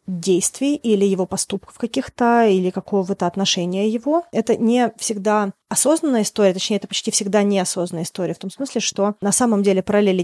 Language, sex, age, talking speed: Russian, female, 20-39, 165 wpm